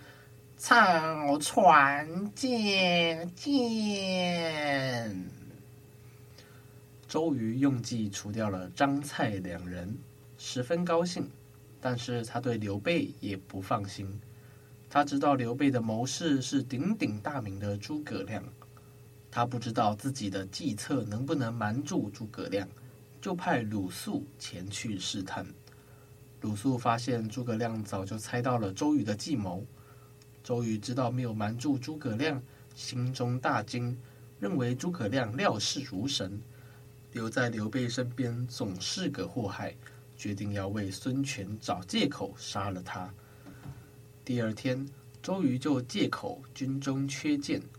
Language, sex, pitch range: Chinese, male, 105-135 Hz